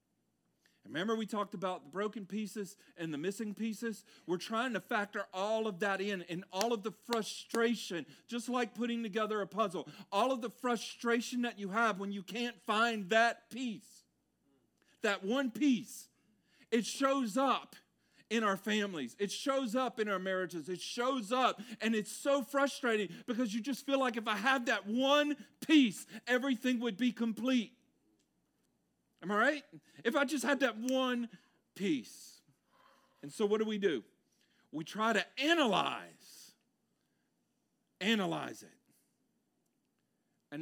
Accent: American